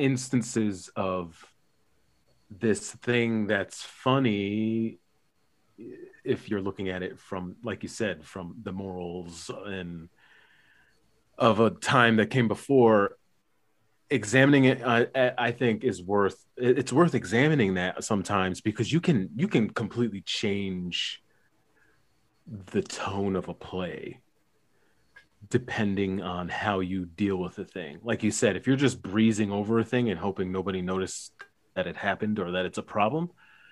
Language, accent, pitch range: English, American, 95-120 Hz